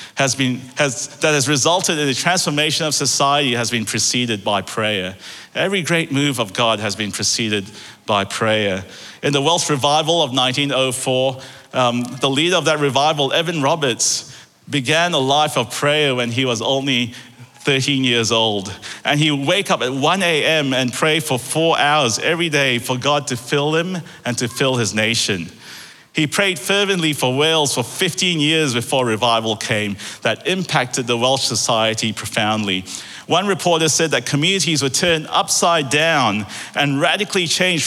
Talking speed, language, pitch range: 170 wpm, English, 125-160 Hz